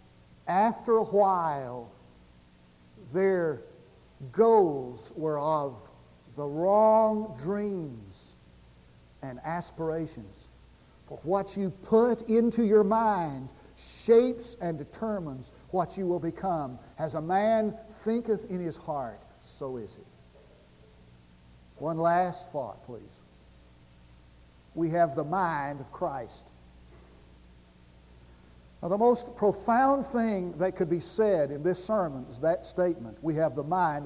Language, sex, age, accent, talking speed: English, male, 60-79, American, 115 wpm